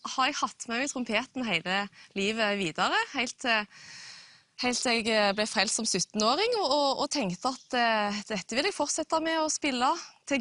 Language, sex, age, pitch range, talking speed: English, female, 20-39, 200-270 Hz, 145 wpm